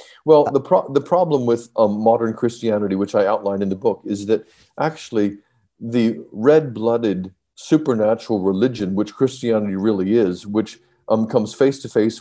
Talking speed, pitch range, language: 145 wpm, 100-120 Hz, English